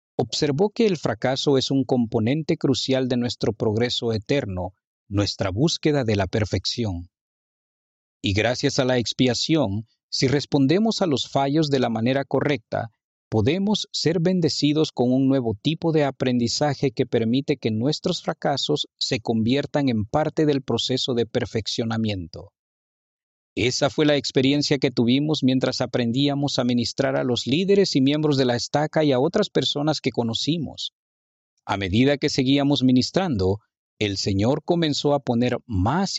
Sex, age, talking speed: male, 50-69, 145 wpm